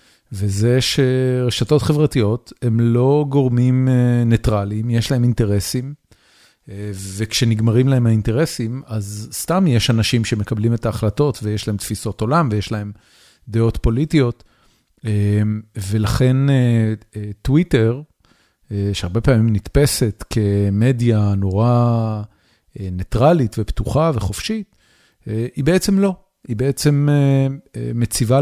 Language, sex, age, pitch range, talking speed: Hebrew, male, 40-59, 105-130 Hz, 95 wpm